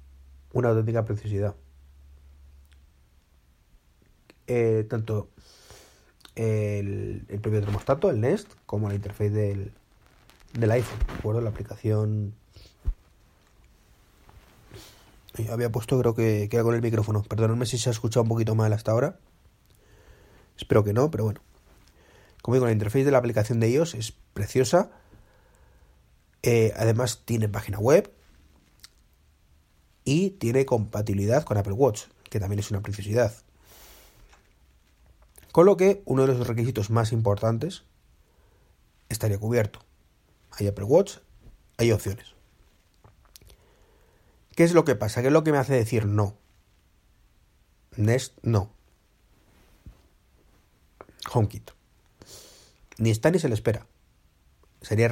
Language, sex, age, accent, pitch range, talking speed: Spanish, male, 30-49, Spanish, 100-120 Hz, 120 wpm